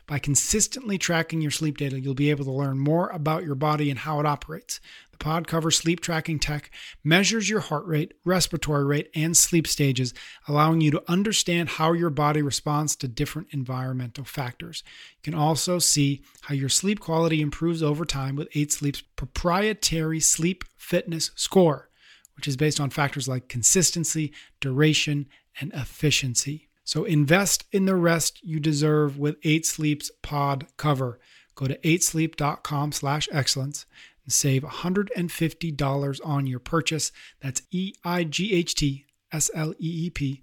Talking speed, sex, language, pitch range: 140 wpm, male, English, 145-170 Hz